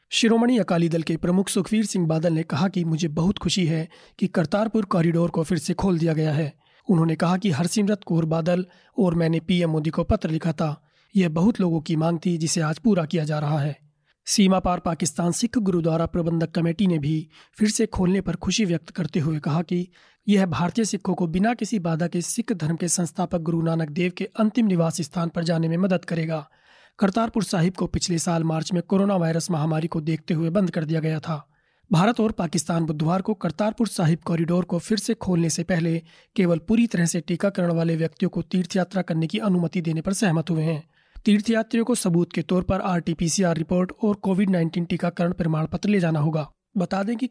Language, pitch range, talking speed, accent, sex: Hindi, 165-195 Hz, 205 wpm, native, male